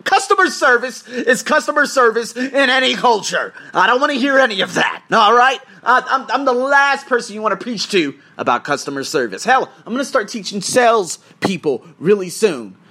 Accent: American